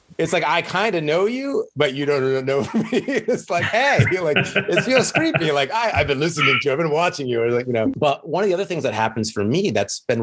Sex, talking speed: male, 280 wpm